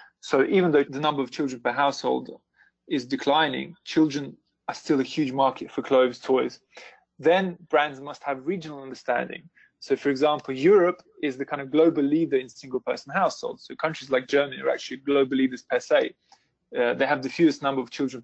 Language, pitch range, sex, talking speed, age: English, 130-155 Hz, male, 190 wpm, 20-39